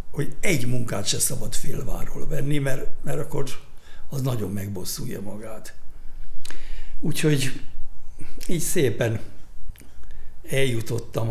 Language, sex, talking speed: Hungarian, male, 95 wpm